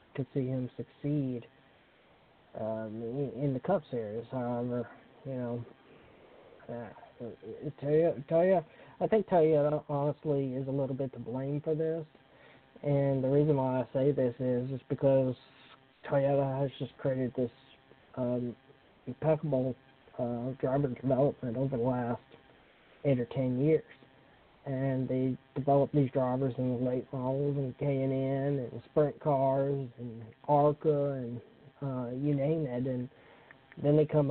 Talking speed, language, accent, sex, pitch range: 140 wpm, English, American, male, 130-145 Hz